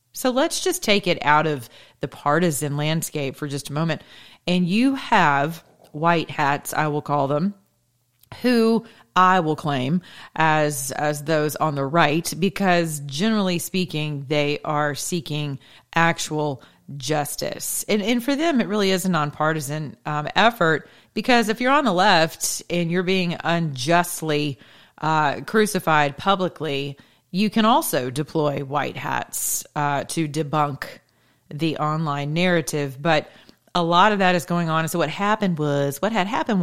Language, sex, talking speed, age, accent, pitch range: English, female, 150 wpm, 40-59, American, 145-175 Hz